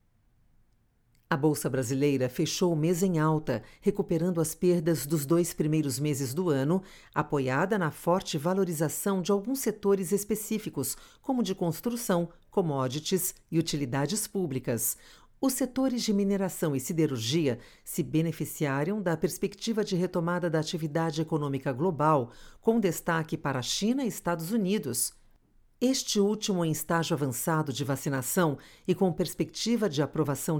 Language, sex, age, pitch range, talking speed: Portuguese, female, 50-69, 145-200 Hz, 135 wpm